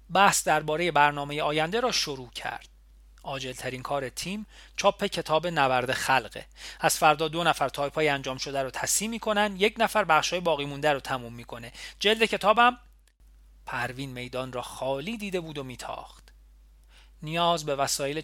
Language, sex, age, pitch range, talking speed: Persian, male, 40-59, 130-185 Hz, 150 wpm